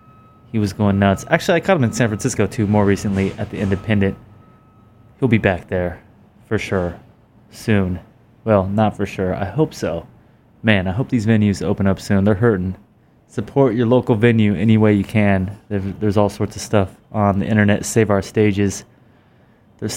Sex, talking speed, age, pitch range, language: male, 185 wpm, 20-39, 100-120 Hz, English